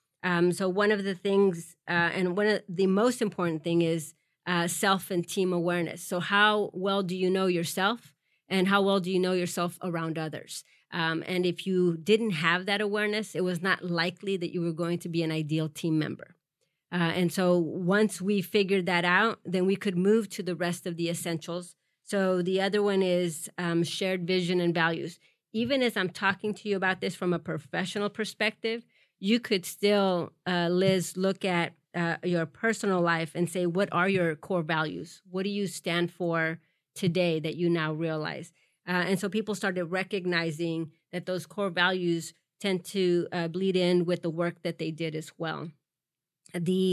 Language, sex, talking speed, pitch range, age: English, female, 190 wpm, 170-195 Hz, 30-49